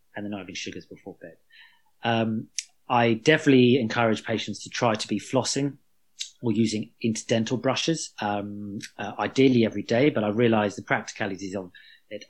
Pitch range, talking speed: 105-130 Hz, 155 wpm